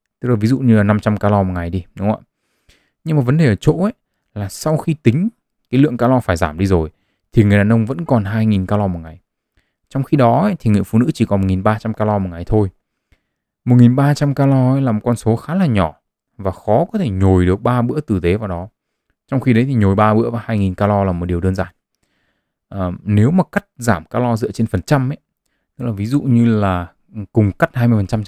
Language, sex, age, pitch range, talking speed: Vietnamese, male, 20-39, 100-125 Hz, 245 wpm